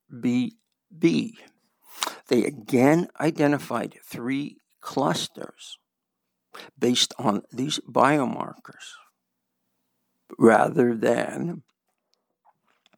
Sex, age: male, 60-79